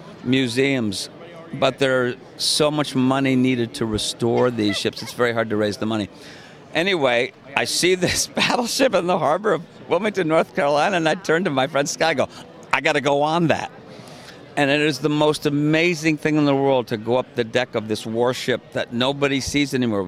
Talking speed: 195 wpm